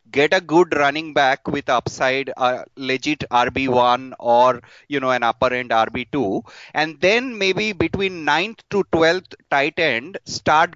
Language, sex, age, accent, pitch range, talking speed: English, male, 30-49, Indian, 130-165 Hz, 150 wpm